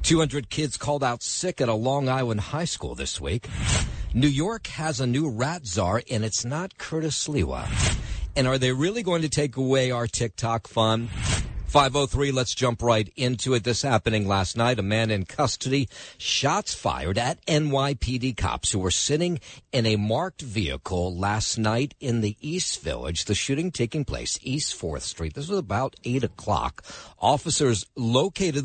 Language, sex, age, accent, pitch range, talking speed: English, male, 50-69, American, 95-130 Hz, 170 wpm